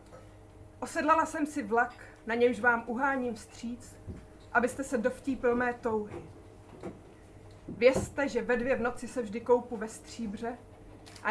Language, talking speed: Czech, 140 wpm